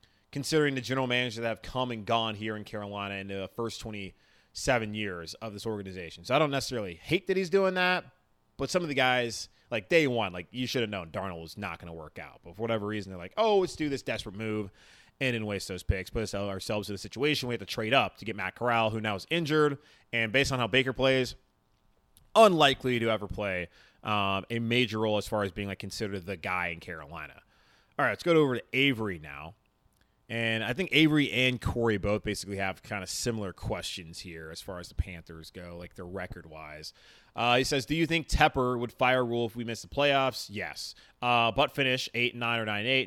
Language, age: English, 30-49